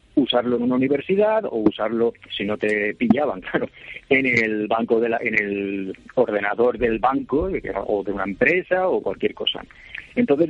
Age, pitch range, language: 40-59, 105-150 Hz, Spanish